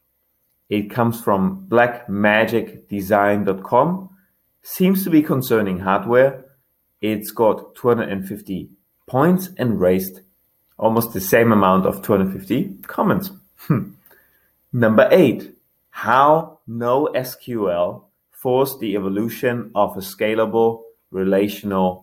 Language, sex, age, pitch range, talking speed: English, male, 30-49, 95-120 Hz, 90 wpm